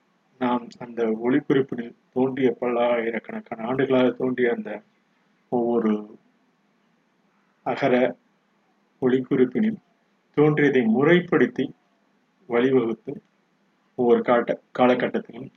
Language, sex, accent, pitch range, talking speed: Tamil, male, native, 120-195 Hz, 70 wpm